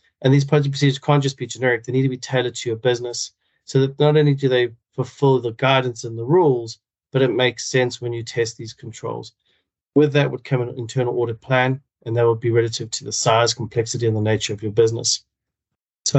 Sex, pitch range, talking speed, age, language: male, 115-130 Hz, 225 wpm, 30-49, English